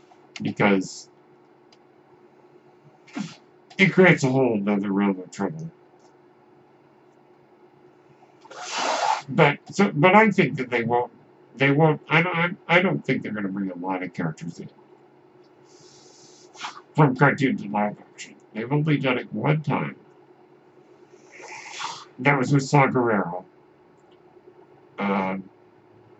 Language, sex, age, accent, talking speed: English, male, 60-79, American, 115 wpm